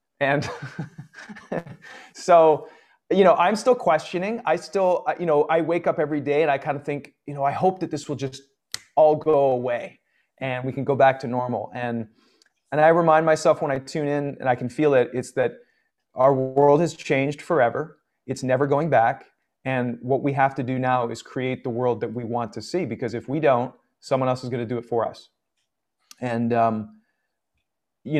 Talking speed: 205 wpm